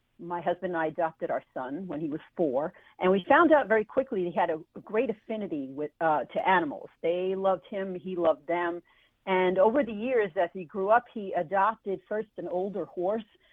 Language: English